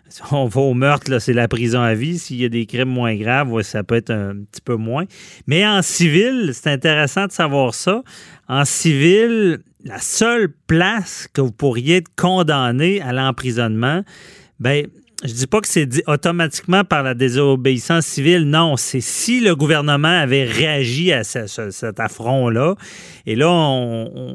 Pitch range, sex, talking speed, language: 120-165 Hz, male, 175 wpm, French